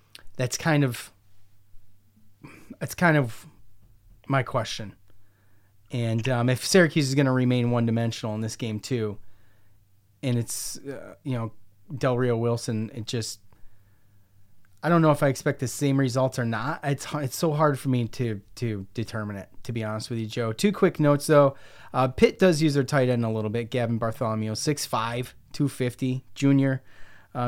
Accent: American